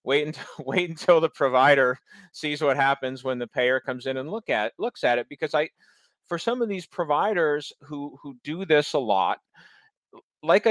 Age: 40-59